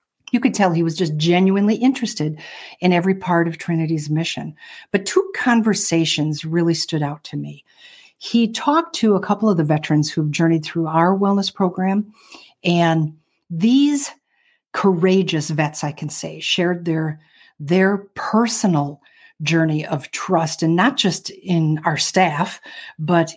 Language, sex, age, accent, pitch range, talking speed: English, female, 50-69, American, 160-205 Hz, 145 wpm